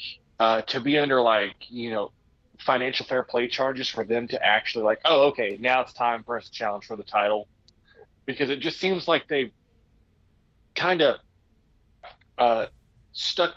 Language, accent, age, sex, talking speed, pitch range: English, American, 30-49, male, 165 wpm, 110-130 Hz